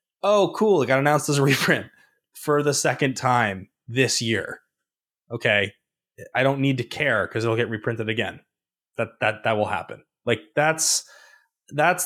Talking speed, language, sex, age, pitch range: 165 wpm, English, male, 20-39, 110-160 Hz